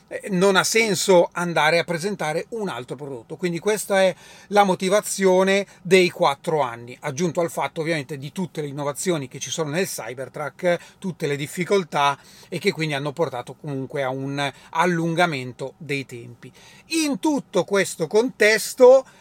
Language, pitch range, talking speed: Italian, 155-205 Hz, 150 wpm